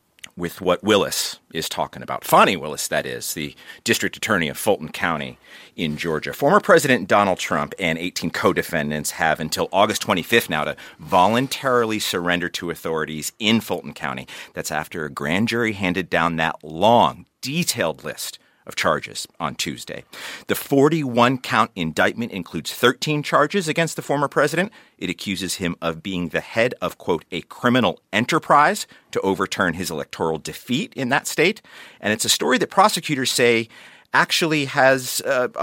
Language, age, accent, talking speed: English, 40-59, American, 160 wpm